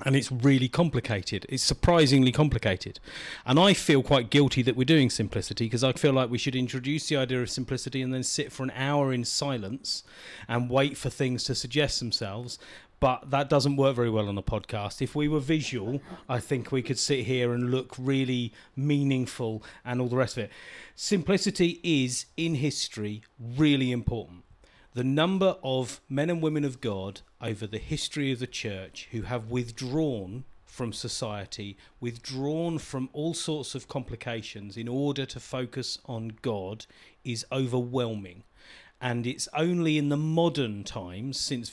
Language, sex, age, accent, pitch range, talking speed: English, male, 40-59, British, 115-140 Hz, 170 wpm